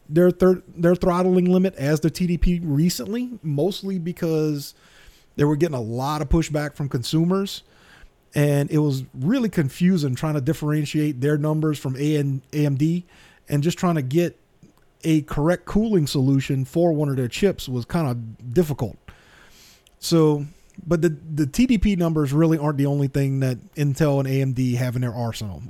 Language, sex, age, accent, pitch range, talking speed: English, male, 40-59, American, 135-165 Hz, 160 wpm